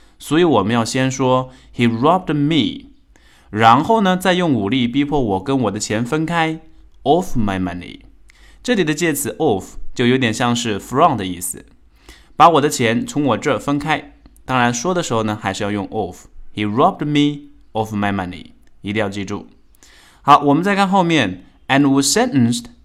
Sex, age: male, 20-39